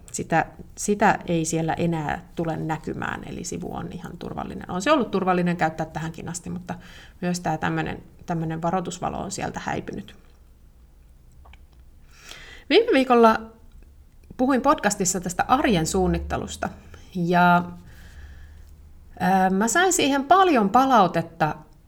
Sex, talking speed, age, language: female, 110 wpm, 30-49, Finnish